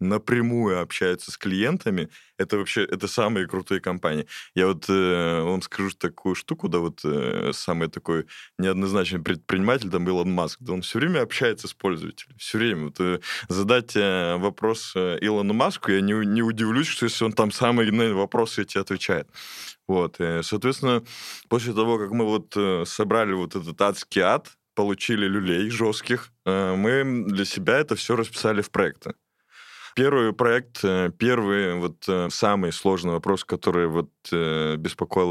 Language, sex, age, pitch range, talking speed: Russian, male, 20-39, 90-115 Hz, 150 wpm